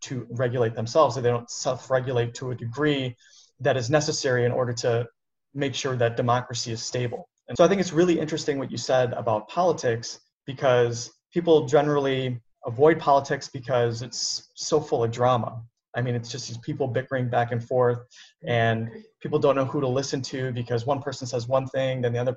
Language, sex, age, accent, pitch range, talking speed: English, male, 20-39, American, 120-145 Hz, 195 wpm